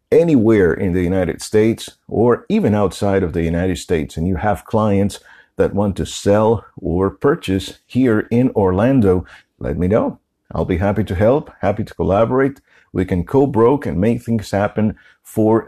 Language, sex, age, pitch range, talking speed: English, male, 50-69, 85-105 Hz, 170 wpm